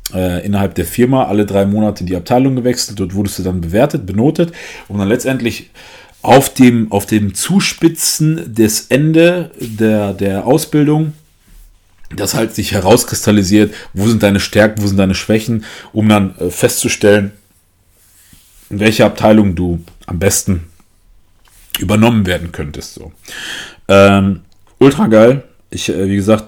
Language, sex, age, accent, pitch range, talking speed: German, male, 40-59, German, 90-115 Hz, 135 wpm